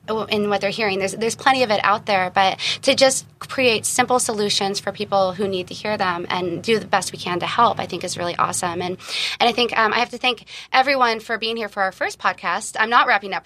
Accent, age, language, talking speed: American, 20-39, English, 260 wpm